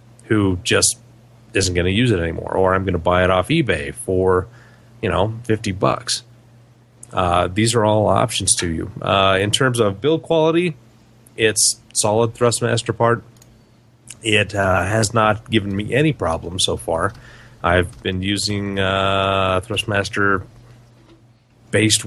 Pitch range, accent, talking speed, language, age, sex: 100-120 Hz, American, 145 wpm, English, 30-49, male